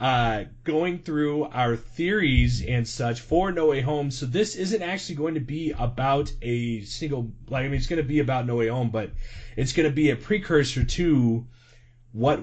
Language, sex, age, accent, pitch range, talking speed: English, male, 30-49, American, 115-145 Hz, 200 wpm